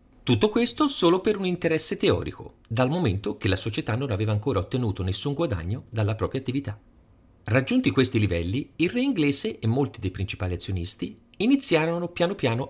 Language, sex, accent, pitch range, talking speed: Italian, male, native, 100-160 Hz, 165 wpm